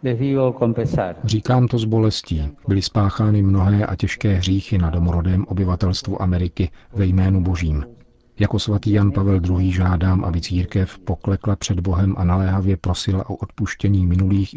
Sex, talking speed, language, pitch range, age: male, 140 wpm, Czech, 90-105 Hz, 40-59